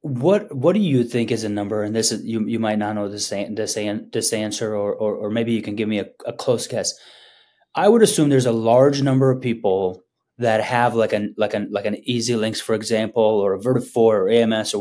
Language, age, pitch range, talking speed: English, 20-39, 115-155 Hz, 245 wpm